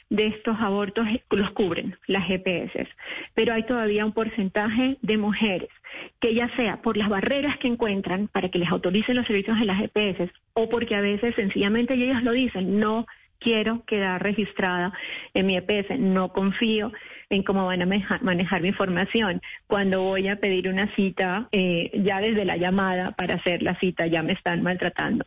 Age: 30-49